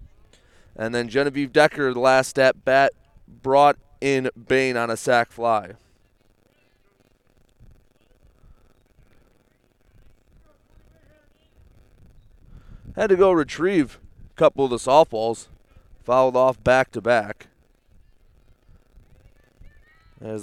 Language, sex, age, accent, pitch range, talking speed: English, male, 30-49, American, 110-155 Hz, 90 wpm